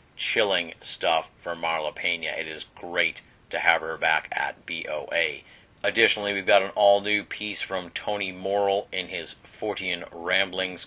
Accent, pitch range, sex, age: American, 85-100 Hz, male, 30-49